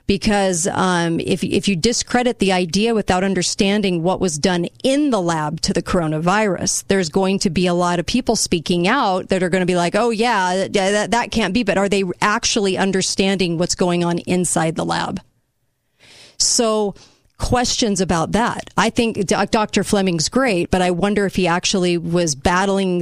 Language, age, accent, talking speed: English, 40-59, American, 180 wpm